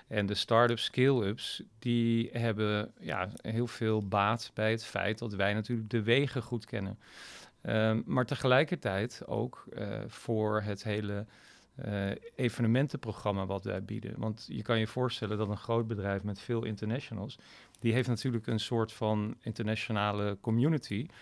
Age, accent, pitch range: 40-59, Dutch, 105-120 Hz